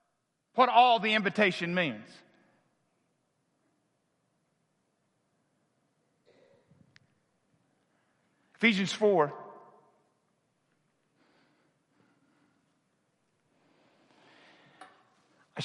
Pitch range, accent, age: 155-195 Hz, American, 50-69